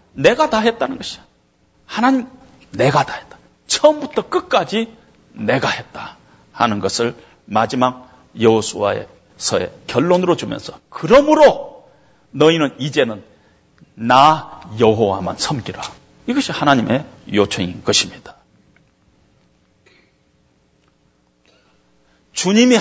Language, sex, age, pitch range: Korean, male, 40-59, 160-245 Hz